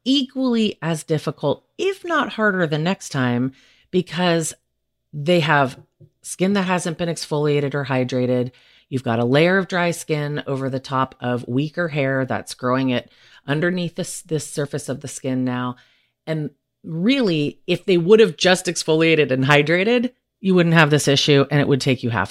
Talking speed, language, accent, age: 170 wpm, English, American, 30-49